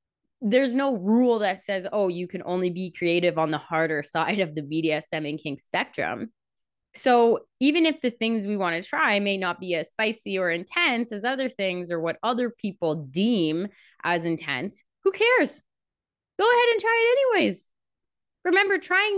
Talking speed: 180 wpm